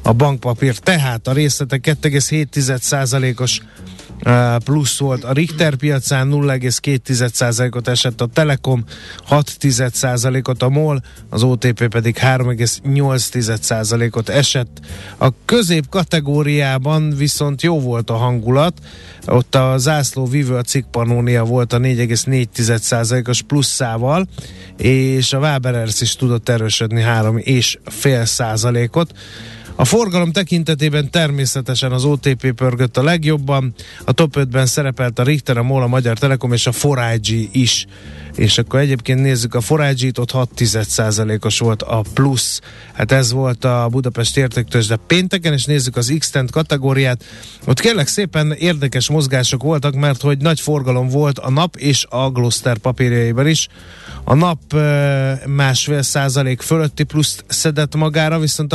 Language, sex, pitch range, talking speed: Hungarian, male, 120-145 Hz, 125 wpm